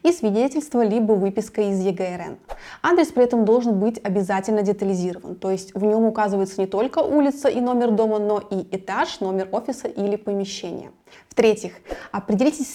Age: 20-39